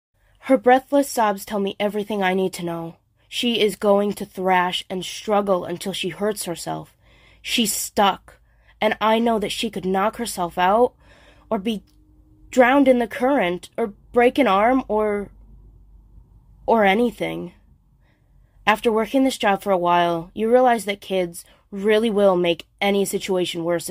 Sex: female